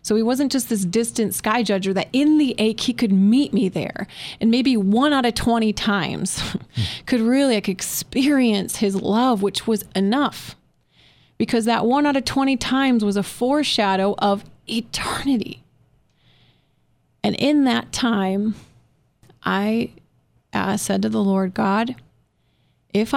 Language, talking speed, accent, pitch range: English, 150 wpm, American, 190-230 Hz